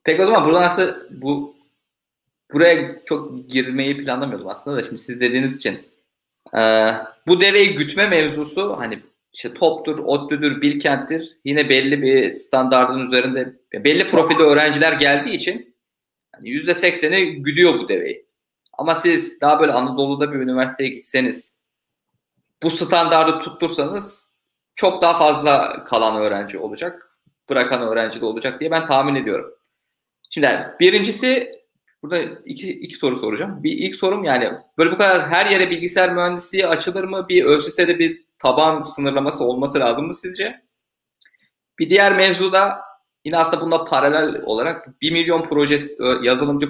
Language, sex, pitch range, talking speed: Turkish, male, 135-180 Hz, 140 wpm